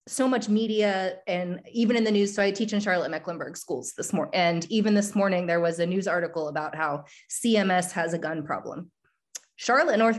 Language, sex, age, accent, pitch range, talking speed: English, female, 20-39, American, 175-210 Hz, 205 wpm